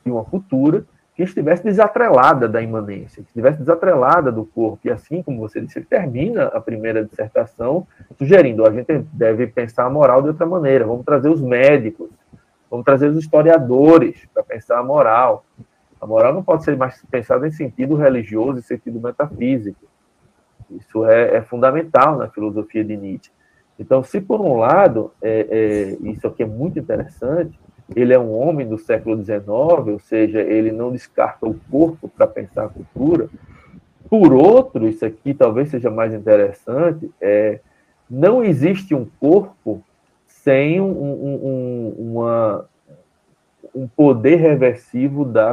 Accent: Brazilian